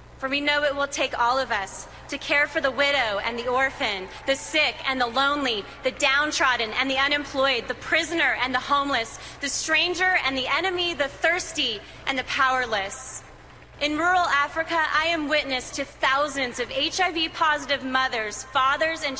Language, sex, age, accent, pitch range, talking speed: English, female, 30-49, American, 255-300 Hz, 175 wpm